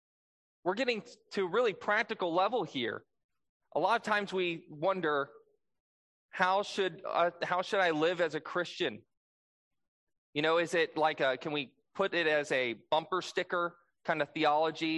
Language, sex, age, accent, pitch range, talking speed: English, male, 20-39, American, 140-195 Hz, 165 wpm